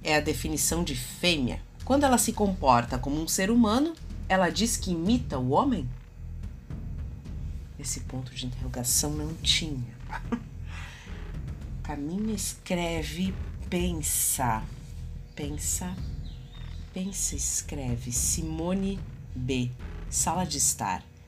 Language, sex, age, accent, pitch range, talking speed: Portuguese, female, 40-59, Brazilian, 130-185 Hz, 100 wpm